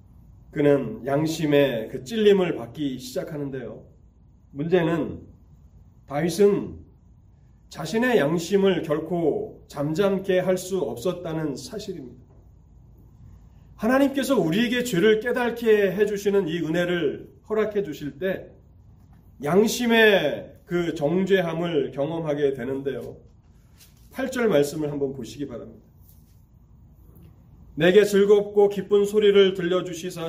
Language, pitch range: Korean, 135-190 Hz